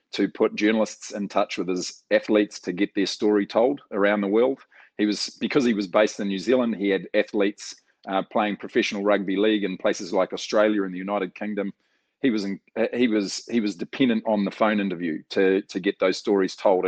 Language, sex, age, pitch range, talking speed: English, male, 40-59, 95-110 Hz, 210 wpm